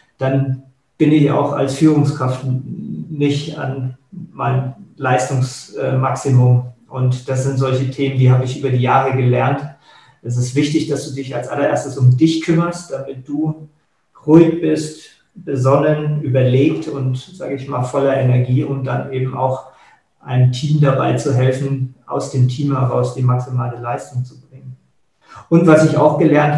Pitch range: 130-145 Hz